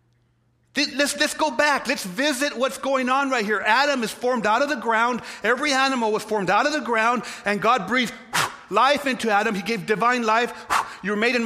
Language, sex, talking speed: English, male, 210 wpm